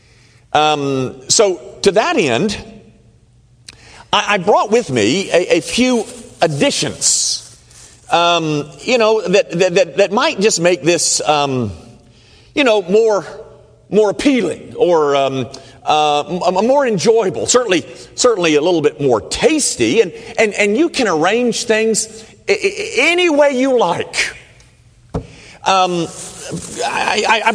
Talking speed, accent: 125 wpm, American